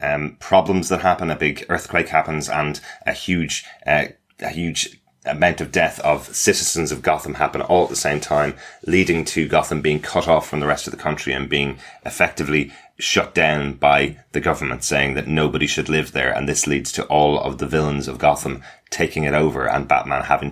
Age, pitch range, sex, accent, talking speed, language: 30-49, 70-85 Hz, male, British, 200 wpm, English